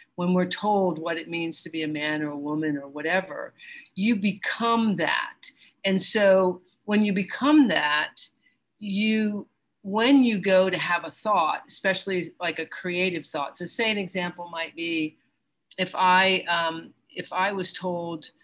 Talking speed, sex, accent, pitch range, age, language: 165 wpm, female, American, 165-195 Hz, 50-69, English